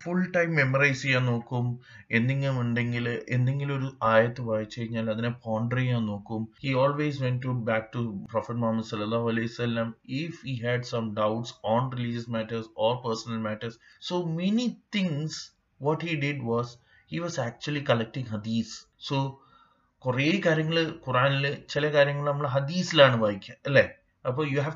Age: 30-49